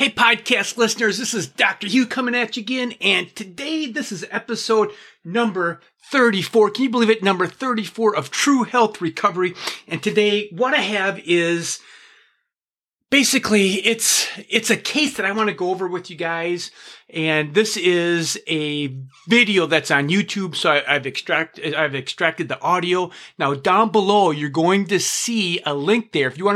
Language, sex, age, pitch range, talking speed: English, male, 30-49, 155-210 Hz, 175 wpm